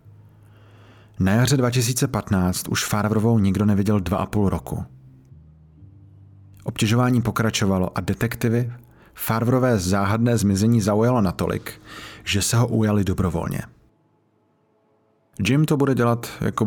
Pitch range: 95-110 Hz